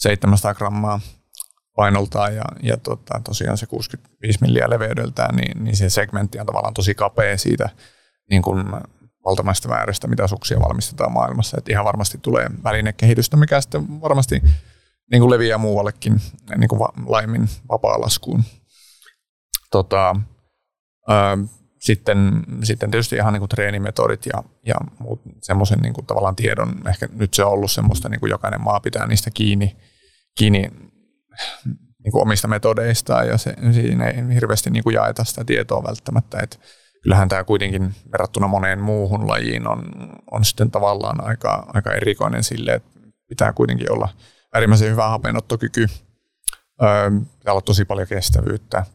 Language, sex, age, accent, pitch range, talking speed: Finnish, male, 30-49, native, 95-115 Hz, 140 wpm